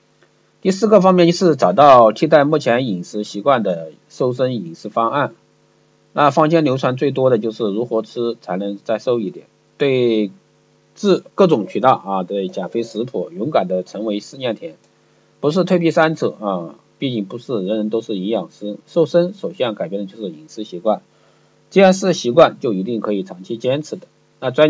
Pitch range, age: 105-155 Hz, 50-69